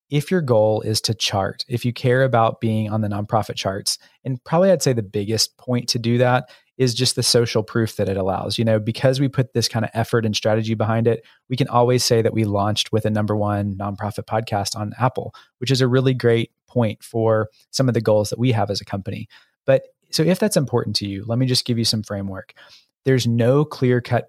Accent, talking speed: American, 235 wpm